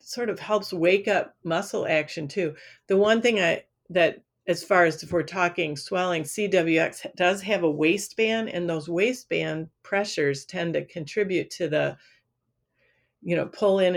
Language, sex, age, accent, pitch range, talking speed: English, female, 50-69, American, 155-195 Hz, 165 wpm